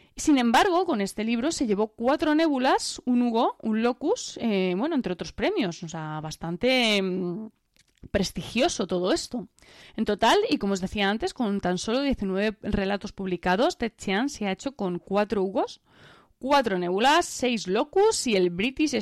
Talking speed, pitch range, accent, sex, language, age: 165 wpm, 190-250 Hz, Spanish, female, Spanish, 20-39